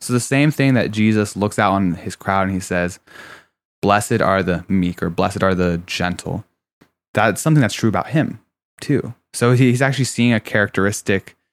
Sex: male